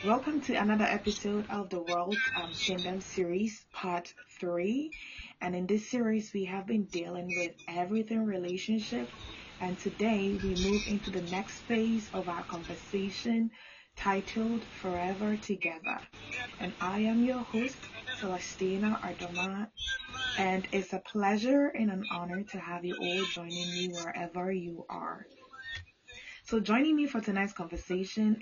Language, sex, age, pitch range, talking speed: Italian, female, 20-39, 180-220 Hz, 140 wpm